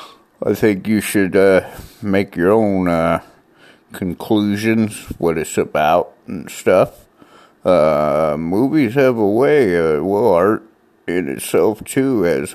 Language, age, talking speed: English, 50-69, 130 wpm